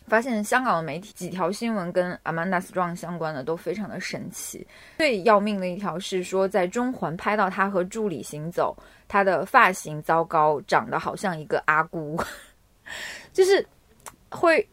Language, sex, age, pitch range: Chinese, female, 20-39, 160-205 Hz